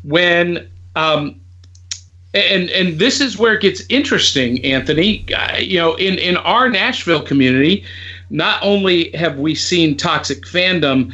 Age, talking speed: 50-69, 135 wpm